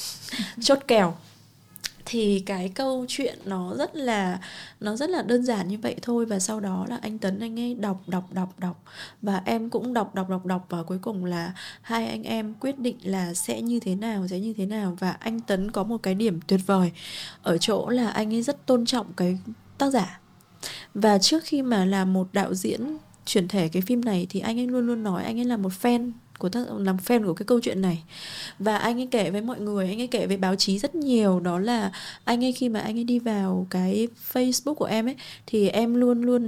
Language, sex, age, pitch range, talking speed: Vietnamese, female, 20-39, 190-235 Hz, 235 wpm